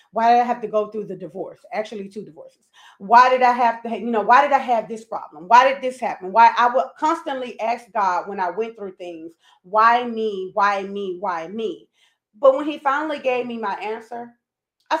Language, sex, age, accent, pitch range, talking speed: English, female, 30-49, American, 210-265 Hz, 220 wpm